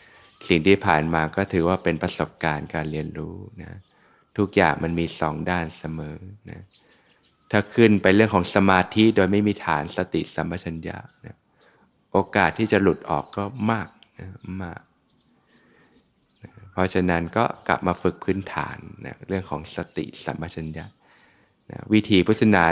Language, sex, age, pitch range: Thai, male, 20-39, 85-105 Hz